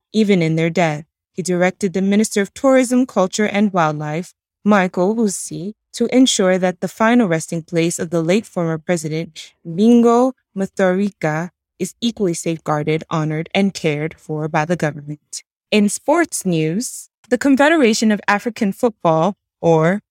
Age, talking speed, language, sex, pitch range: 20-39, 145 wpm, English, female, 165-215 Hz